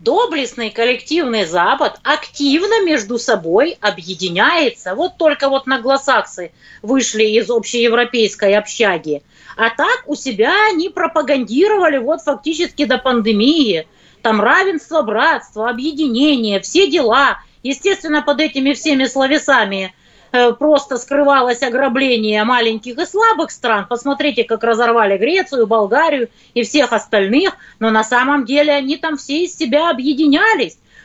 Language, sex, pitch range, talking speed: Russian, female, 245-355 Hz, 120 wpm